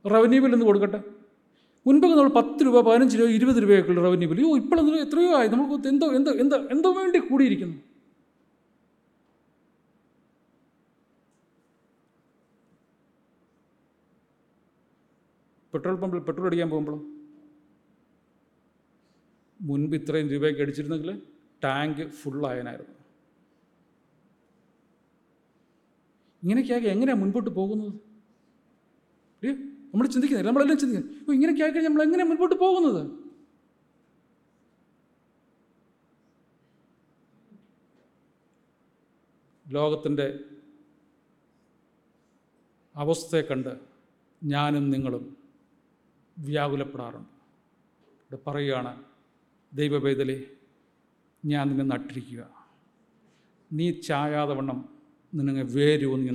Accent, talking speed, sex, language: native, 75 wpm, male, Malayalam